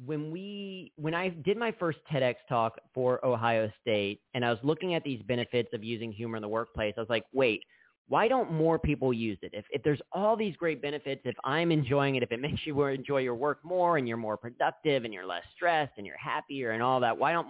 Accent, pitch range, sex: American, 115-150 Hz, male